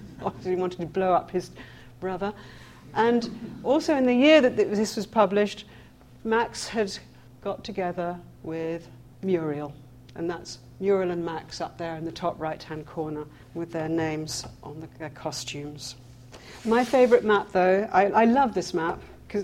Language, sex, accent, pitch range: English, female, British, 155-195 Hz